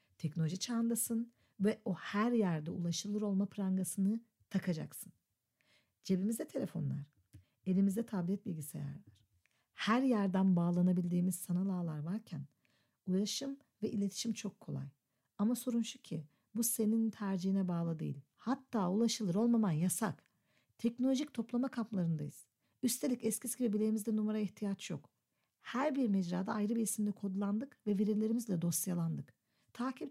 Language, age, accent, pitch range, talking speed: Turkish, 60-79, native, 175-230 Hz, 120 wpm